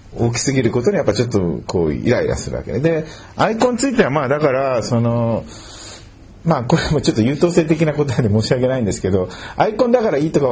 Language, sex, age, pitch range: Japanese, male, 40-59, 110-155 Hz